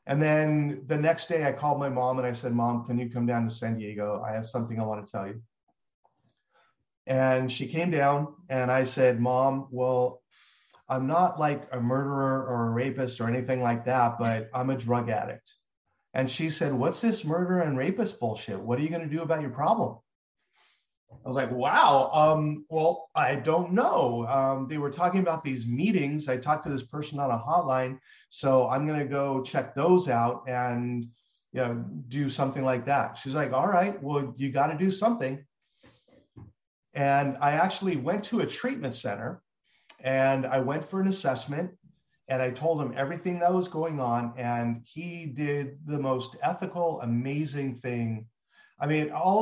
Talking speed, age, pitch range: 190 wpm, 40-59, 125-155 Hz